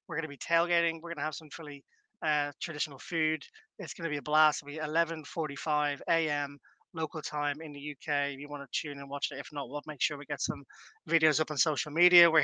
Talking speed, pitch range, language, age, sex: 240 wpm, 155-185 Hz, English, 20-39, male